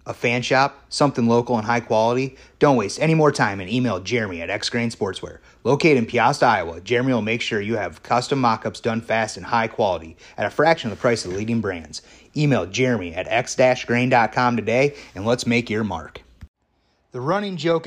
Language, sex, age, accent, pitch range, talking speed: English, male, 30-49, American, 115-140 Hz, 200 wpm